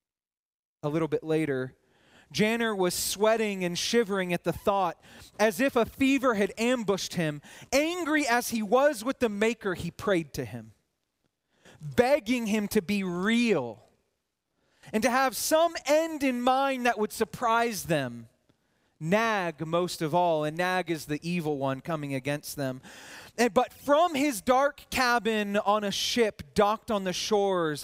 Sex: male